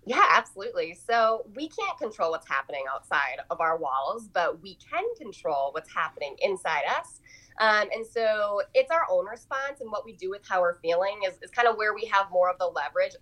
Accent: American